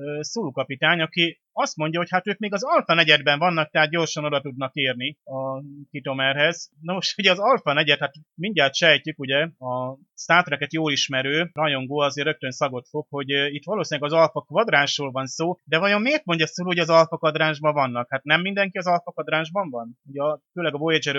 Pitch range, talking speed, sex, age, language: 135-150 Hz, 185 wpm, male, 30-49, Hungarian